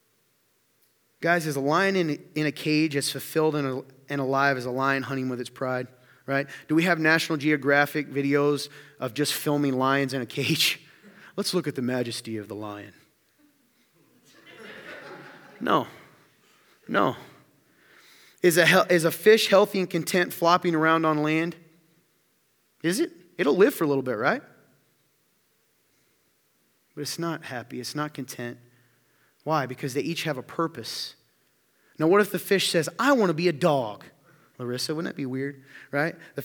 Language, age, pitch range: English, 30-49, 140-195 Hz